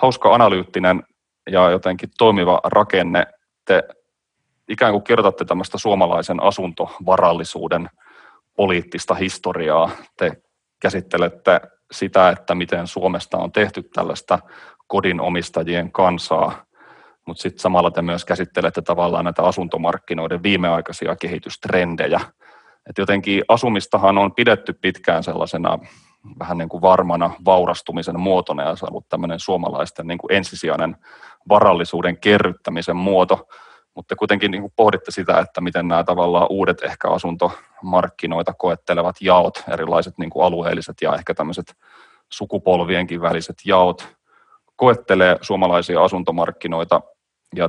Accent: native